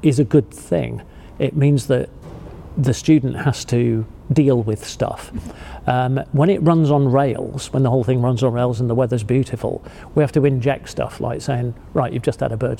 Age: 40-59